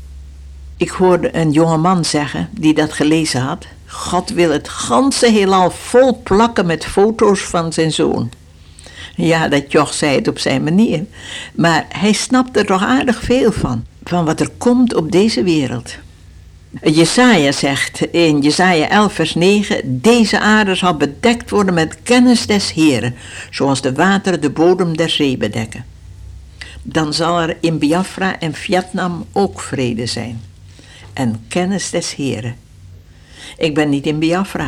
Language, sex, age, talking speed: Dutch, female, 60-79, 150 wpm